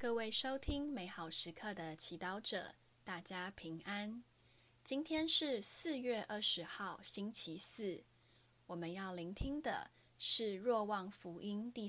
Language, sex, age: Chinese, female, 10-29